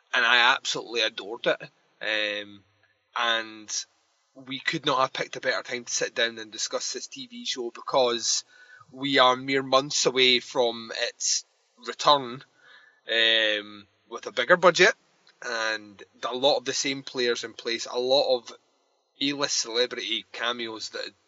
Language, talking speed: English, 150 wpm